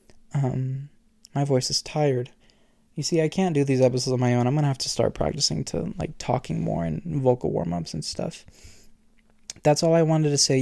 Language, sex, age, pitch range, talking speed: English, male, 20-39, 125-140 Hz, 205 wpm